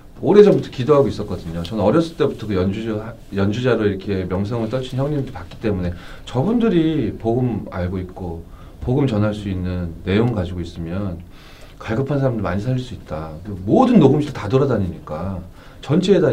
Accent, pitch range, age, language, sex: native, 95-135 Hz, 30-49, Korean, male